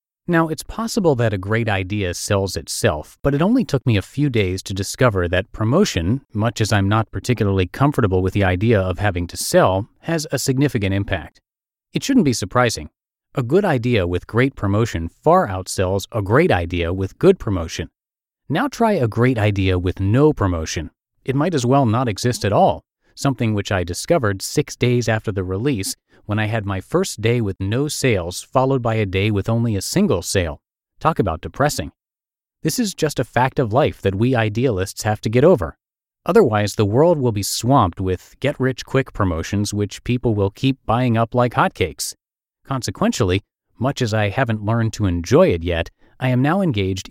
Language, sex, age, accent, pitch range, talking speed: English, male, 30-49, American, 95-135 Hz, 185 wpm